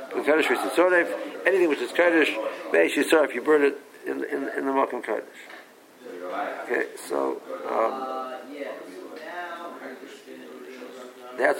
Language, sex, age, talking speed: English, male, 60-79, 110 wpm